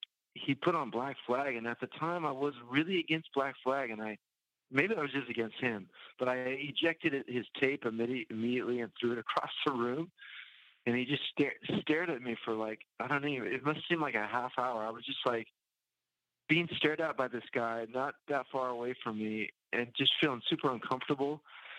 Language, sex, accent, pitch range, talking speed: English, male, American, 110-135 Hz, 205 wpm